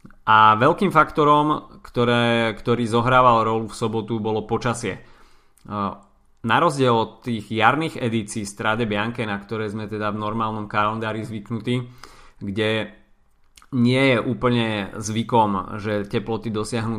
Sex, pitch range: male, 105-120 Hz